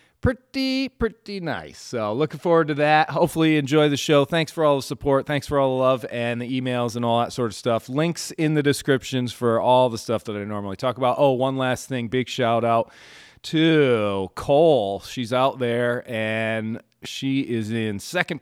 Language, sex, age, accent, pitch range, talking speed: English, male, 30-49, American, 105-130 Hz, 200 wpm